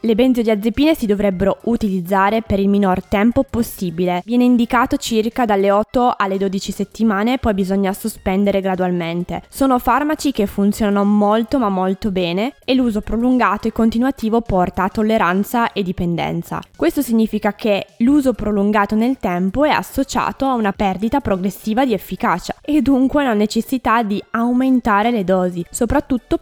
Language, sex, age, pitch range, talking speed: Italian, female, 20-39, 190-235 Hz, 150 wpm